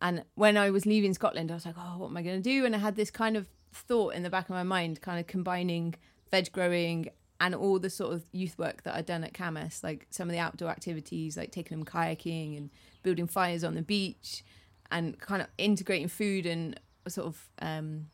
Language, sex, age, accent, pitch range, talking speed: English, female, 20-39, British, 160-190 Hz, 230 wpm